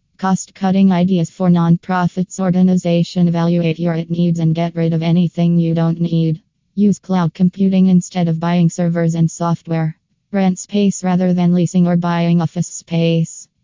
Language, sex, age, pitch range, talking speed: English, female, 20-39, 165-180 Hz, 155 wpm